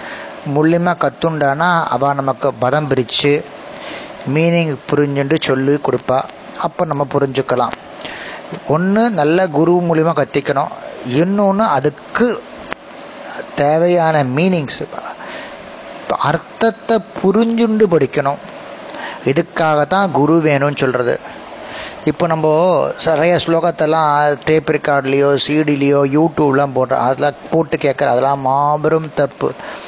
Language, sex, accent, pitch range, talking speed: Tamil, male, native, 140-165 Hz, 90 wpm